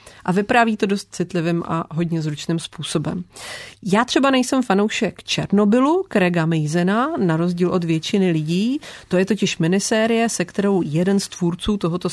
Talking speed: 155 wpm